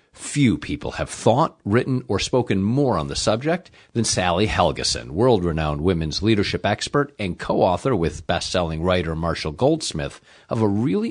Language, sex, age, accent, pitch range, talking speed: English, male, 50-69, American, 90-130 Hz, 150 wpm